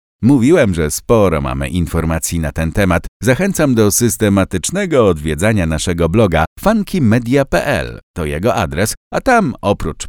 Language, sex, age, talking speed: Polish, male, 50-69, 125 wpm